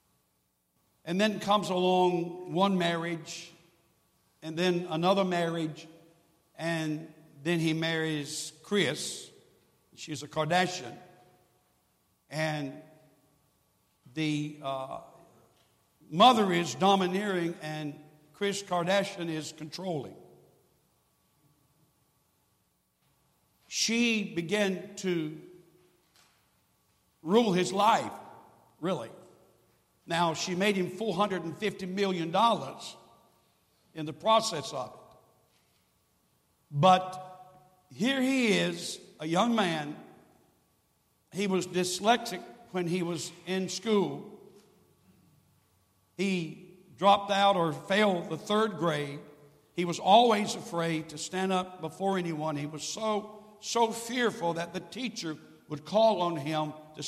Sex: male